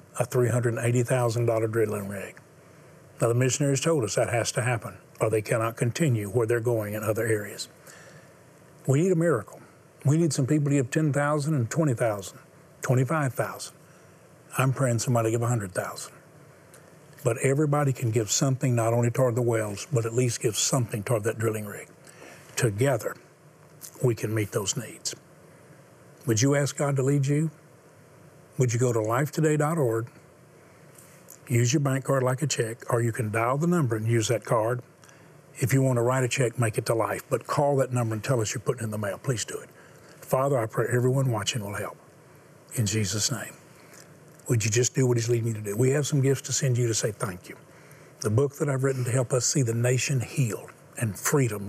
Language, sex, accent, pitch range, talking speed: English, male, American, 115-140 Hz, 195 wpm